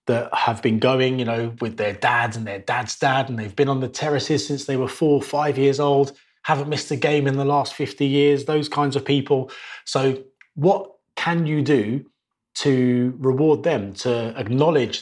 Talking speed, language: 200 wpm, English